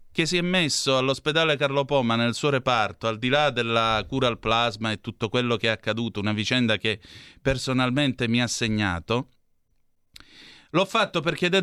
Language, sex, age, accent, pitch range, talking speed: Italian, male, 30-49, native, 110-135 Hz, 175 wpm